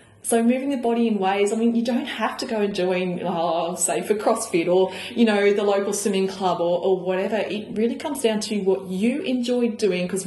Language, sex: English, female